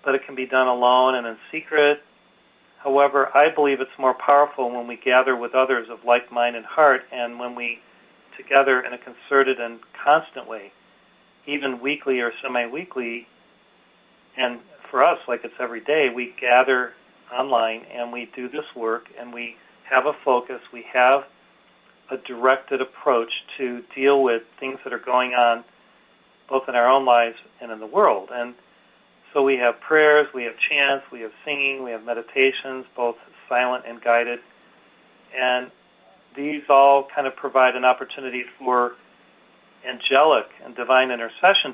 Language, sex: English, male